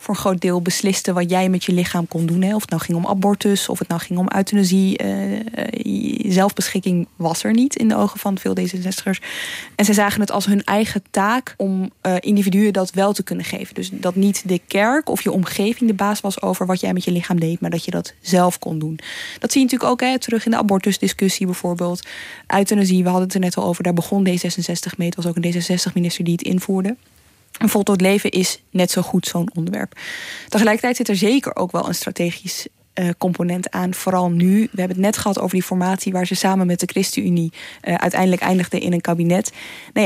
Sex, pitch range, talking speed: female, 180-205 Hz, 220 wpm